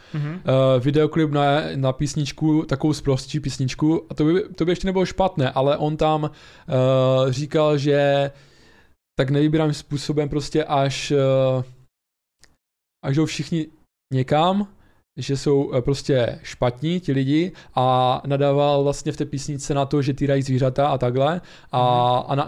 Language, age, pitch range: Czech, 20-39, 130-150 Hz